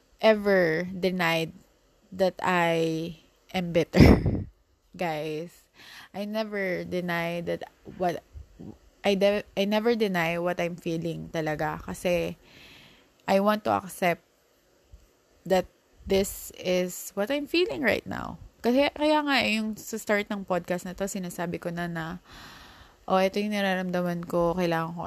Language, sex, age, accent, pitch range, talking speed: Filipino, female, 20-39, native, 165-200 Hz, 135 wpm